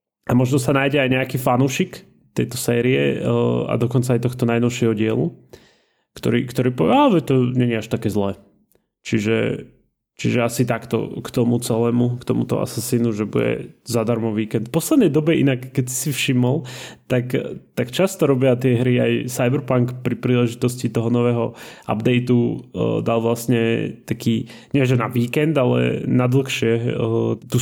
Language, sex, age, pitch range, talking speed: Slovak, male, 20-39, 115-135 Hz, 150 wpm